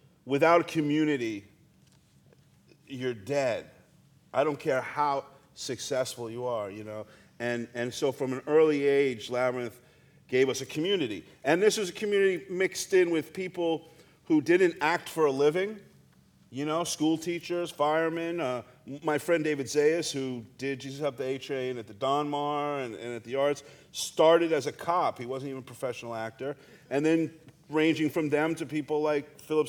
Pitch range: 130-155 Hz